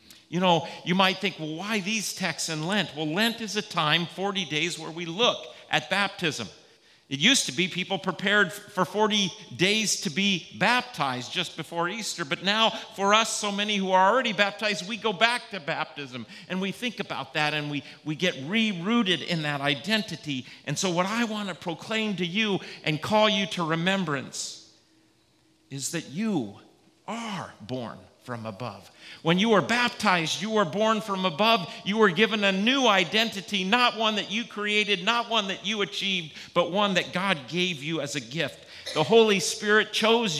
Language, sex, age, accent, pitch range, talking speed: English, male, 40-59, American, 145-210 Hz, 185 wpm